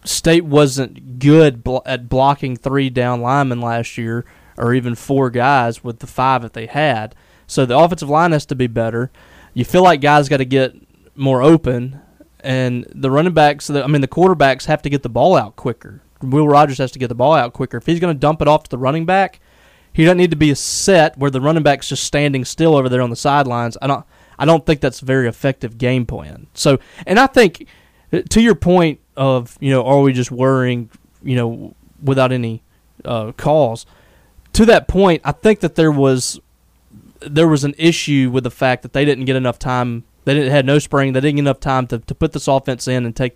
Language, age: English, 20-39